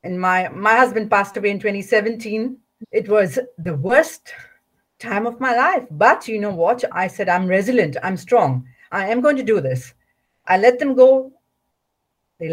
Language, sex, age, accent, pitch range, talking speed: English, female, 50-69, Indian, 190-245 Hz, 175 wpm